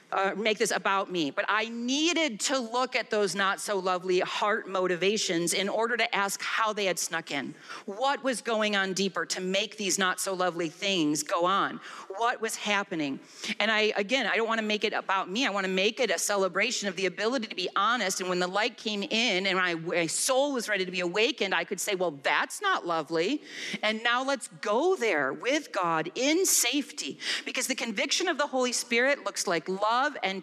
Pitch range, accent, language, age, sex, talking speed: 185-245 Hz, American, English, 40-59, female, 215 wpm